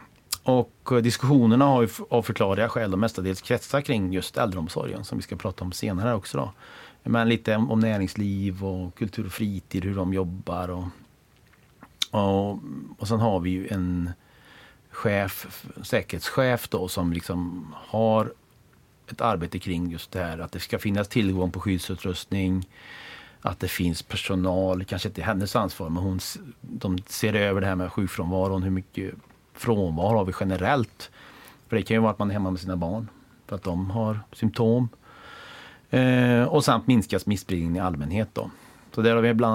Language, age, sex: English, 30-49, male